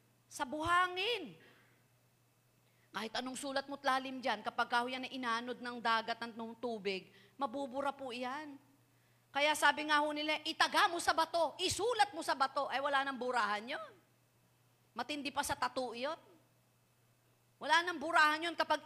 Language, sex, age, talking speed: Filipino, female, 40-59, 145 wpm